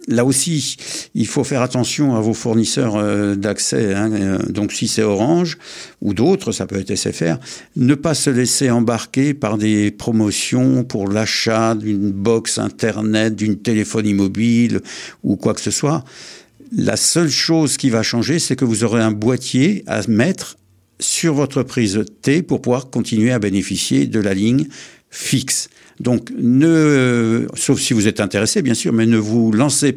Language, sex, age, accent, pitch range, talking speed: French, male, 60-79, French, 105-125 Hz, 165 wpm